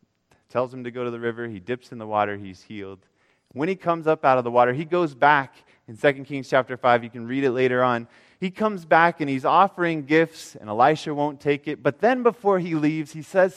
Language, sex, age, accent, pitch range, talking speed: English, male, 20-39, American, 115-160 Hz, 245 wpm